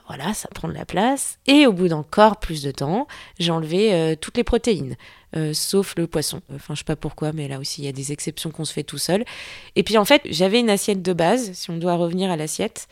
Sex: female